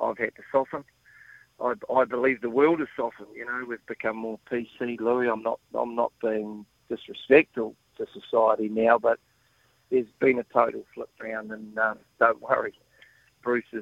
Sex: male